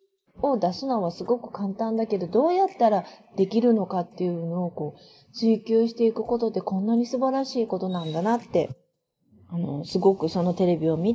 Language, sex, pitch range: Japanese, female, 170-240 Hz